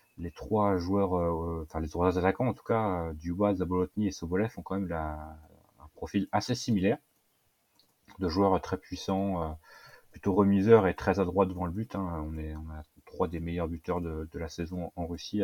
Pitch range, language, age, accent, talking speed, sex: 85-100 Hz, French, 30-49, French, 205 wpm, male